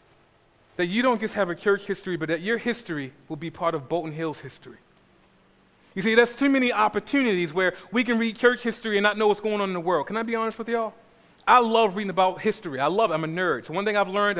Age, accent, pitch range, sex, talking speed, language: 40-59, American, 195-265 Hz, male, 260 wpm, English